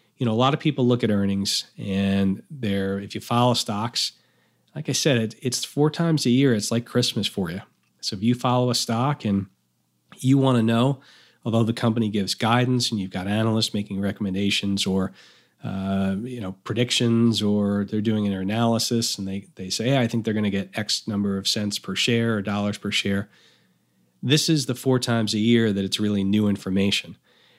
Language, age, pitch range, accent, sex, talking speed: English, 40-59, 100-125 Hz, American, male, 205 wpm